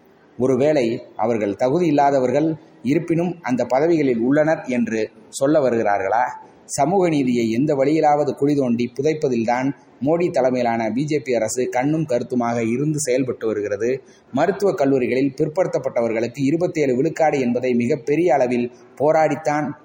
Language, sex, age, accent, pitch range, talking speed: Tamil, male, 30-49, native, 120-155 Hz, 110 wpm